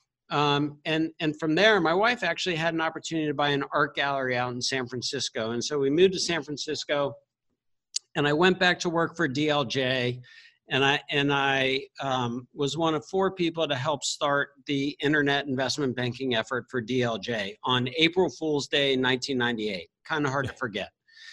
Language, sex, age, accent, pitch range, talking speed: English, male, 60-79, American, 125-155 Hz, 180 wpm